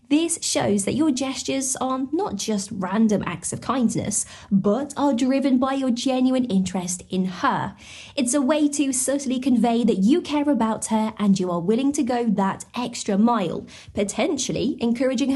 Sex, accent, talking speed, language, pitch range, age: female, British, 170 wpm, English, 220-285 Hz, 20-39